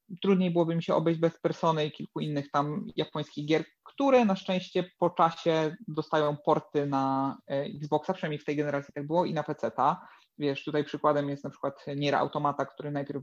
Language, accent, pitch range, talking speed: Polish, native, 145-165 Hz, 185 wpm